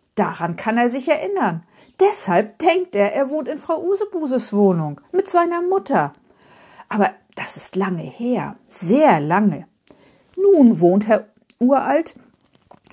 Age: 50-69